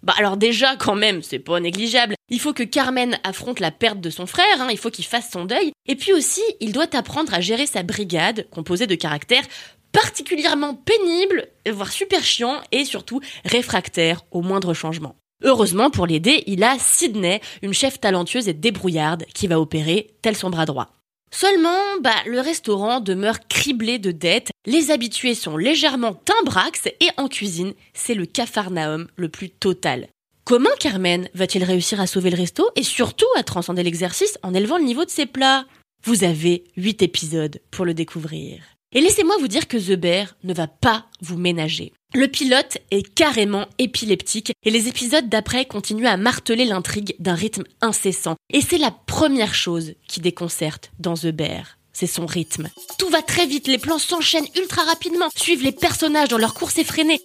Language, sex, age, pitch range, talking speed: French, female, 20-39, 180-275 Hz, 180 wpm